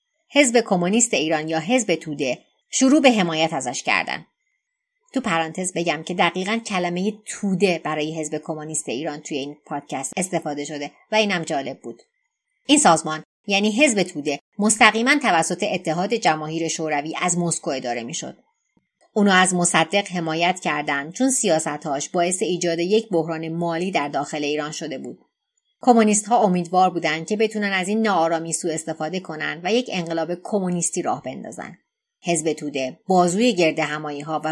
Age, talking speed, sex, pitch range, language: 30-49, 155 wpm, female, 155-215 Hz, Persian